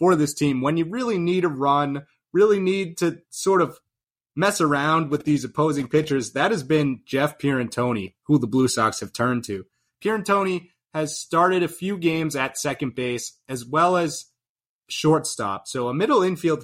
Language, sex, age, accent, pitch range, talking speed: English, male, 30-49, American, 125-160 Hz, 175 wpm